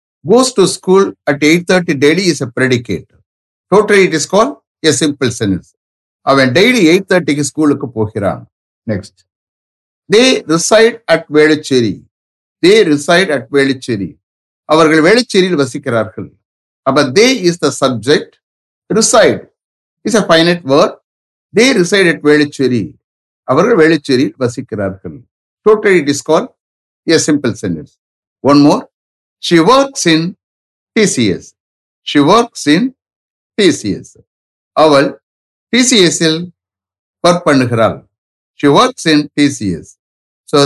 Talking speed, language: 115 wpm, English